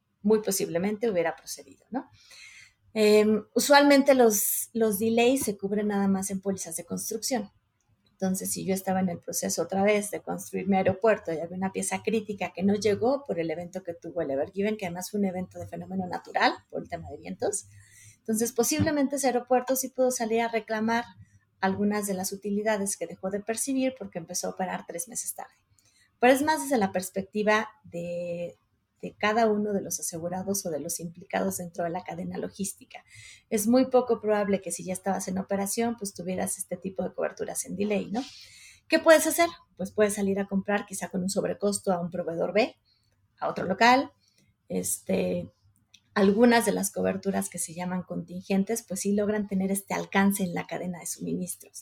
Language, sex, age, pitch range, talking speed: Spanish, female, 30-49, 180-225 Hz, 190 wpm